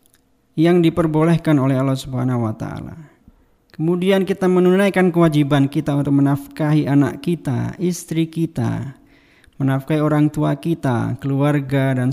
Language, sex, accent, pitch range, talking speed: Indonesian, male, native, 135-160 Hz, 120 wpm